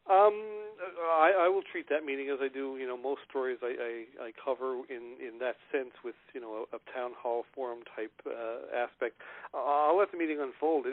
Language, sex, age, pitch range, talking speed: English, male, 40-59, 125-145 Hz, 210 wpm